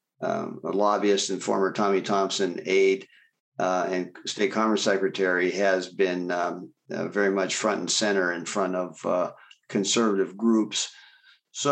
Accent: American